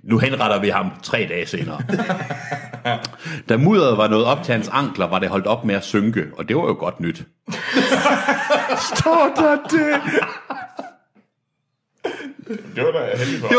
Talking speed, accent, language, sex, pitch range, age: 140 wpm, native, Danish, male, 100-145 Hz, 60-79